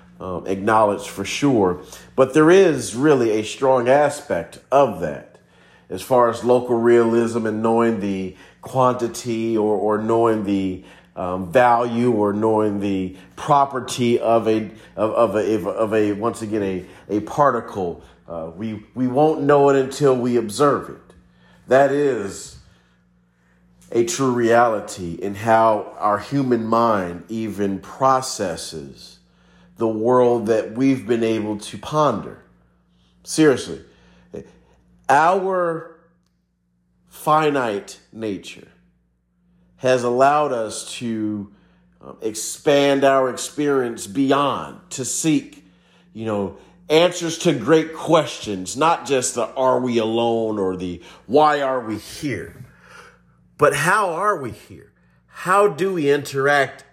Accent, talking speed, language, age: American, 125 wpm, English, 40-59